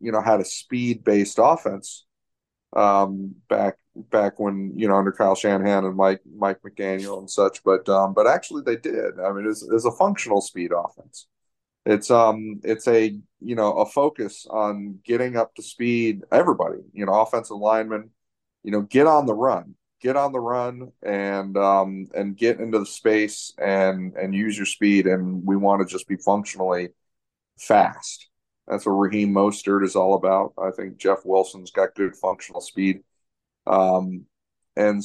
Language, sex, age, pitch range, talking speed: English, male, 30-49, 95-110 Hz, 170 wpm